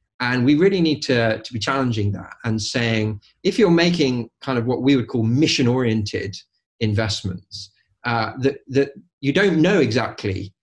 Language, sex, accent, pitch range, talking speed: English, male, British, 105-130 Hz, 165 wpm